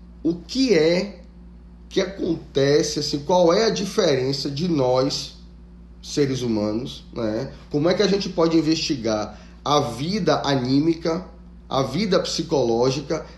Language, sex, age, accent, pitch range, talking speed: Portuguese, male, 10-29, Brazilian, 115-165 Hz, 120 wpm